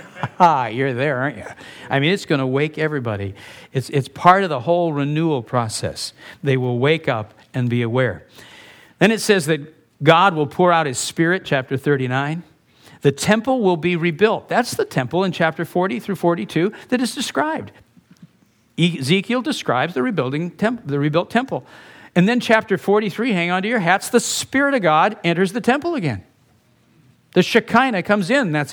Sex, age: male, 50-69